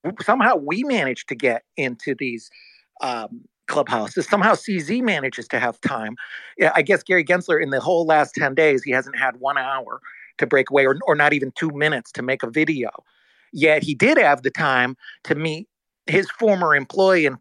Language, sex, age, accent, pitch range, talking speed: English, male, 40-59, American, 140-190 Hz, 190 wpm